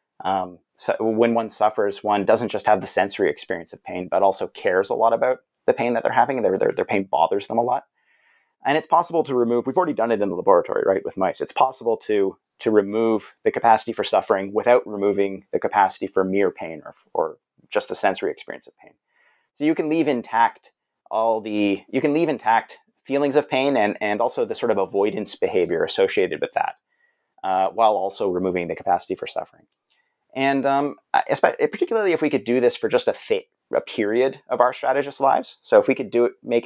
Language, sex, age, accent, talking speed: English, male, 30-49, American, 215 wpm